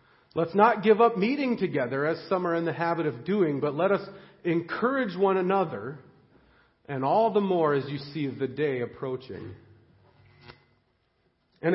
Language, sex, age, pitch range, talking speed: English, male, 40-59, 150-200 Hz, 160 wpm